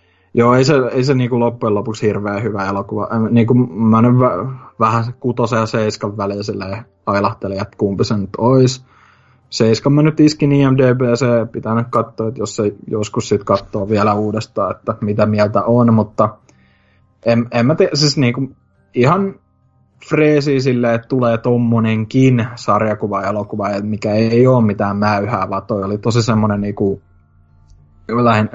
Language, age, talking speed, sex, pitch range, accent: Finnish, 20-39, 155 wpm, male, 100-120 Hz, native